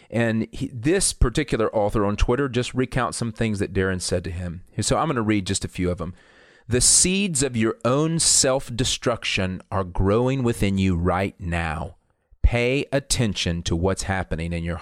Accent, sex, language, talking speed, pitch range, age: American, male, English, 180 wpm, 90-120 Hz, 40-59